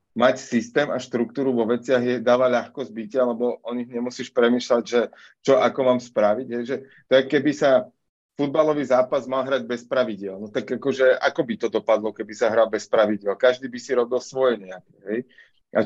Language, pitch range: Slovak, 110-125 Hz